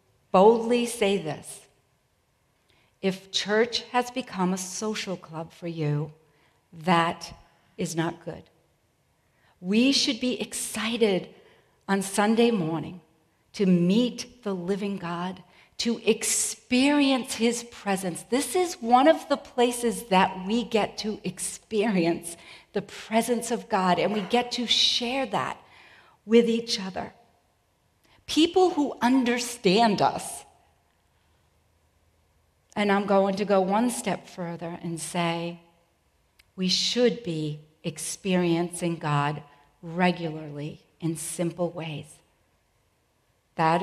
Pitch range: 160-220 Hz